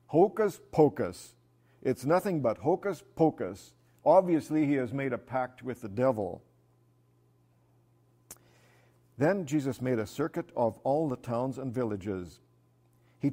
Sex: male